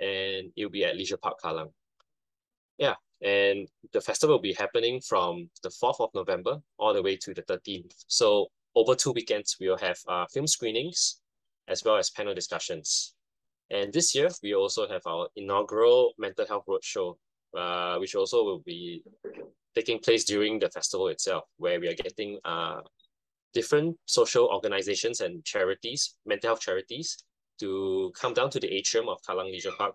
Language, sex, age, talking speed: English, male, 20-39, 170 wpm